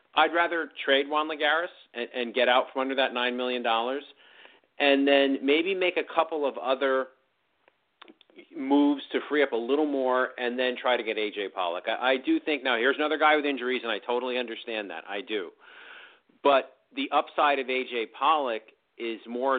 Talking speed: 185 wpm